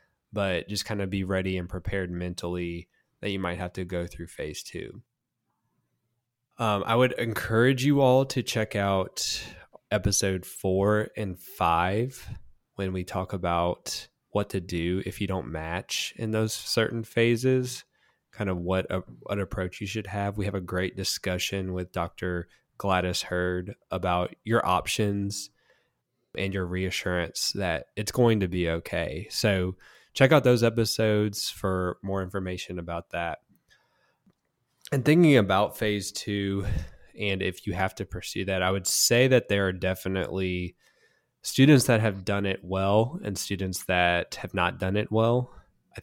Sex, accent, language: male, American, English